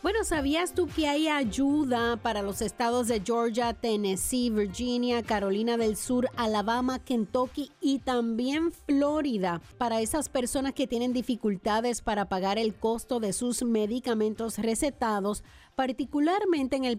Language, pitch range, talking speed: English, 205-260 Hz, 135 wpm